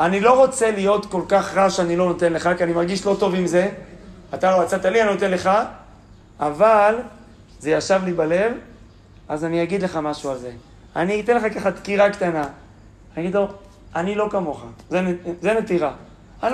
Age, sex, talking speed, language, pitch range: 40-59, male, 185 wpm, Hebrew, 155-220 Hz